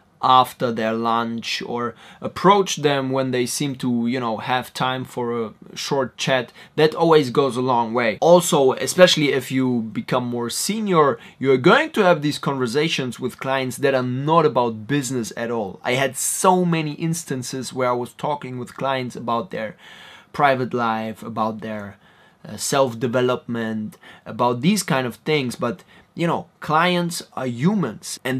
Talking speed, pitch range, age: 160 wpm, 125-155 Hz, 20-39